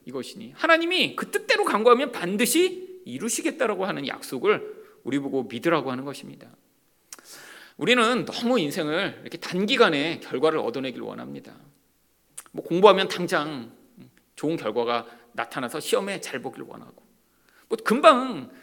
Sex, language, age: male, Korean, 40-59